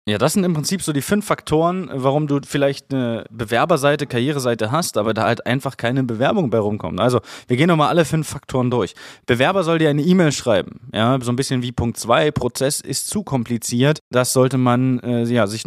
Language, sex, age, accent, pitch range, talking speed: German, male, 20-39, German, 110-140 Hz, 210 wpm